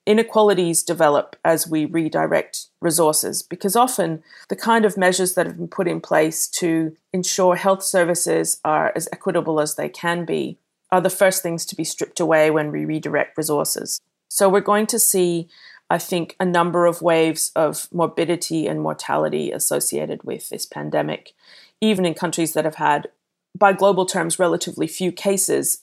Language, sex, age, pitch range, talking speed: English, female, 30-49, 155-185 Hz, 165 wpm